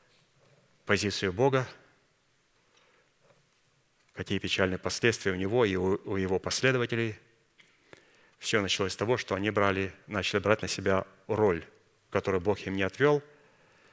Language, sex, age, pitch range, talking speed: Russian, male, 30-49, 95-110 Hz, 115 wpm